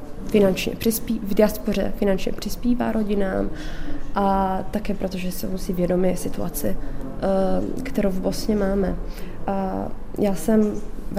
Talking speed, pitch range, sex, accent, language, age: 125 wpm, 185-215 Hz, female, native, Czech, 20-39